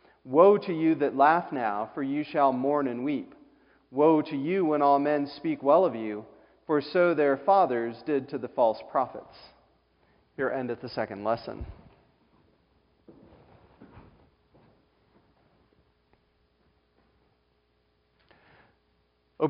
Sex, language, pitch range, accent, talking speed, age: male, English, 130-180 Hz, American, 115 wpm, 40-59